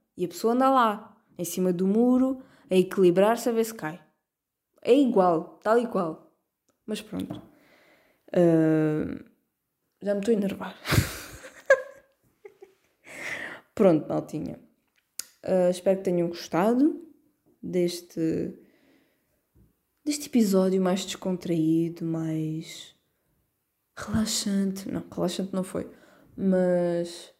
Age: 20-39